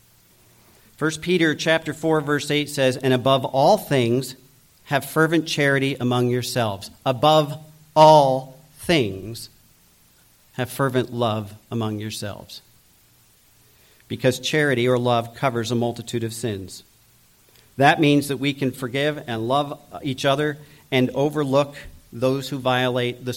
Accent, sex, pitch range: American, male, 115-145 Hz